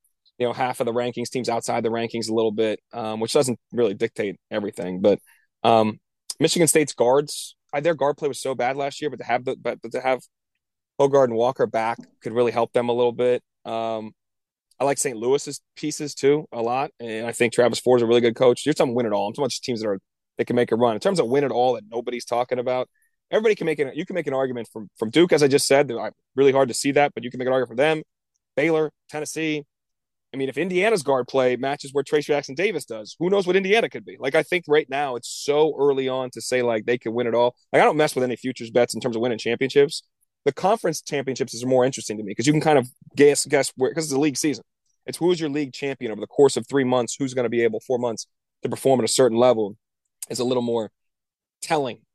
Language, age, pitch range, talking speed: English, 30-49, 115-145 Hz, 260 wpm